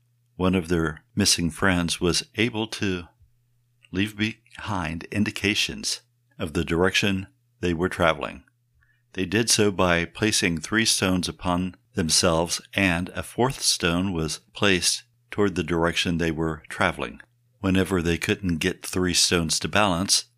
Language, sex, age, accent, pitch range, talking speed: English, male, 60-79, American, 85-110 Hz, 135 wpm